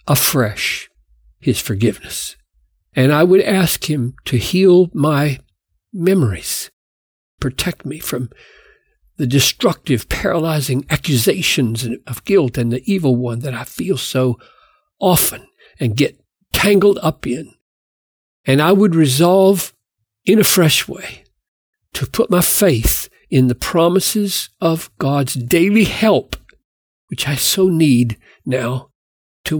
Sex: male